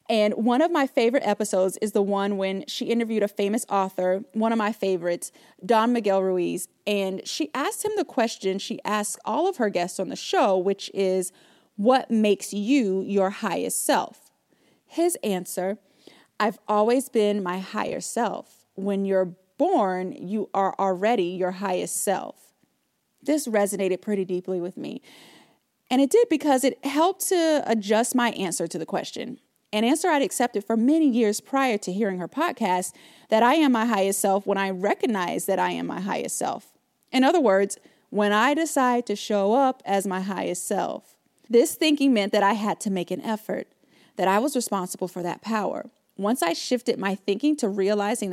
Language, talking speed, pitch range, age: English, 180 wpm, 195-250 Hz, 30-49